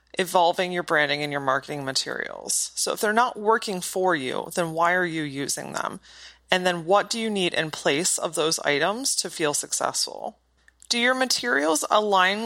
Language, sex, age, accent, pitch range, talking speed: English, female, 30-49, American, 160-215 Hz, 185 wpm